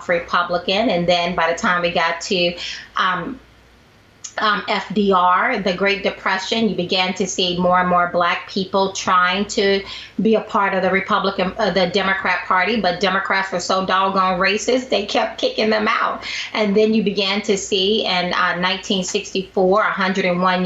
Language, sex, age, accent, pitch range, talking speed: English, female, 30-49, American, 180-210 Hz, 160 wpm